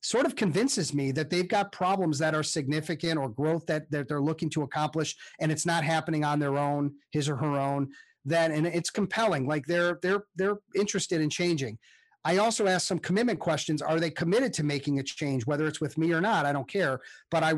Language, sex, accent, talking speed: English, male, American, 220 wpm